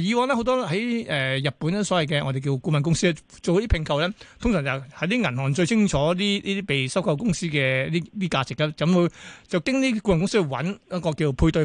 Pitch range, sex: 150-205 Hz, male